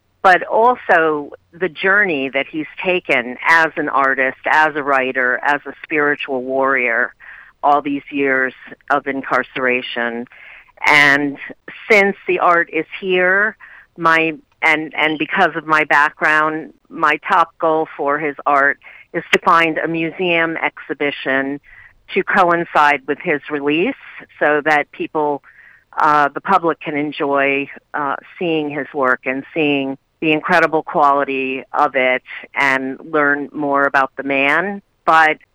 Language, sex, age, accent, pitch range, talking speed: English, female, 50-69, American, 140-165 Hz, 130 wpm